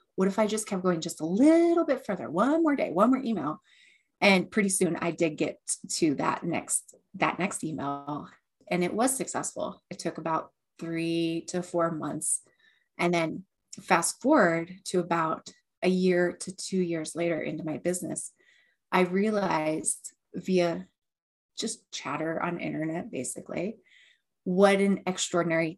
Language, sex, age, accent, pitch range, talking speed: English, female, 30-49, American, 165-200 Hz, 155 wpm